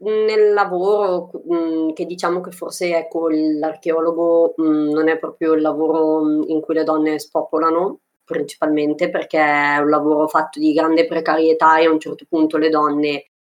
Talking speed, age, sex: 150 wpm, 20-39, female